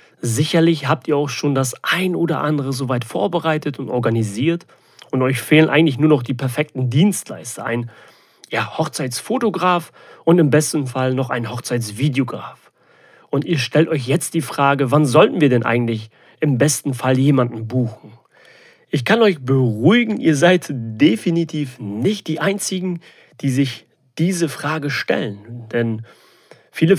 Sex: male